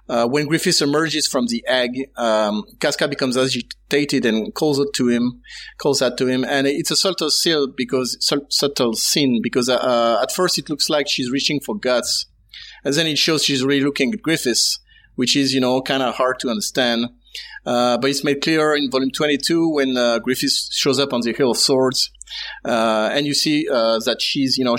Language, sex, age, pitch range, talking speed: English, male, 30-49, 120-145 Hz, 205 wpm